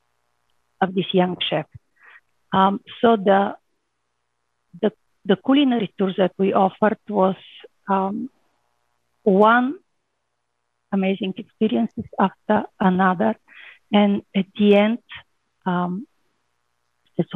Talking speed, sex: 90 wpm, female